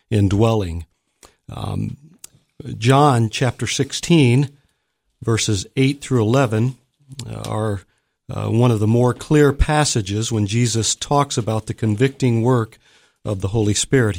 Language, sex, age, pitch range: English, male, 50-69, 110-135 Hz